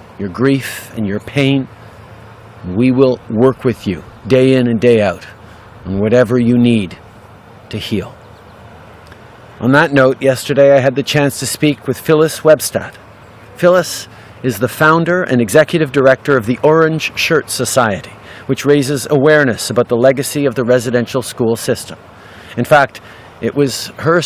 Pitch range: 110-135 Hz